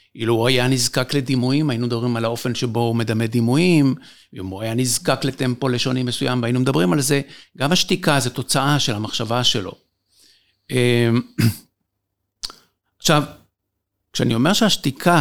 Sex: male